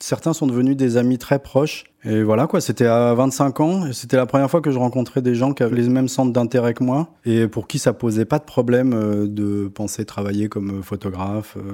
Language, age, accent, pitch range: French, 20-39, French, 110-140 Hz